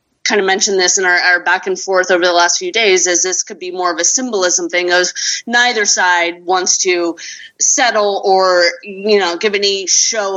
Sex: female